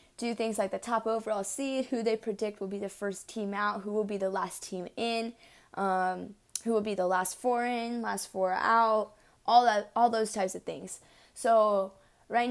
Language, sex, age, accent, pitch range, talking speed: English, female, 10-29, American, 195-235 Hz, 205 wpm